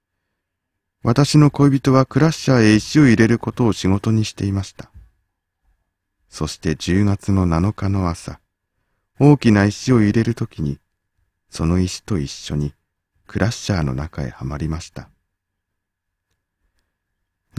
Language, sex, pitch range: Japanese, male, 85-105 Hz